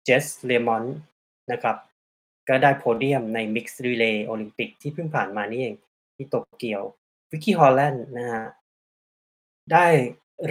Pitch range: 110-135 Hz